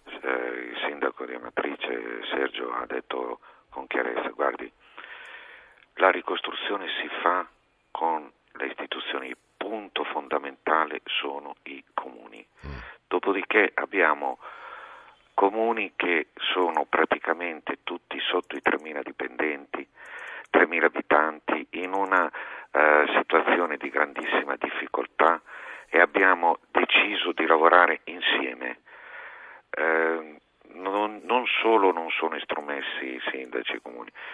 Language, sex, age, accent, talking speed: Italian, male, 50-69, native, 105 wpm